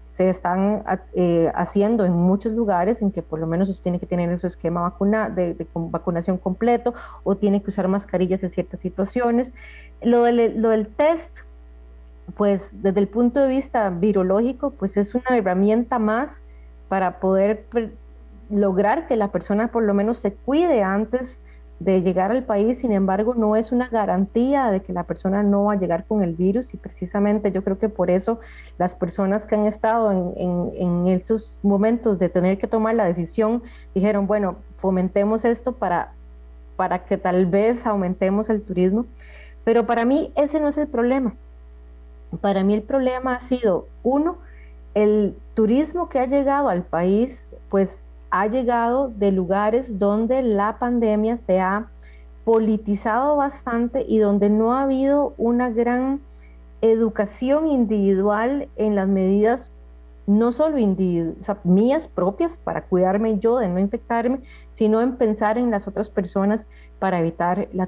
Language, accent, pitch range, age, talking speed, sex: Spanish, Colombian, 185-235 Hz, 30-49, 165 wpm, female